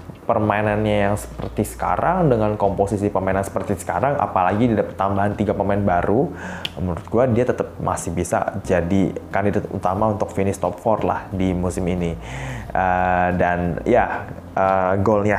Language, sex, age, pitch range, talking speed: Indonesian, male, 20-39, 95-115 Hz, 135 wpm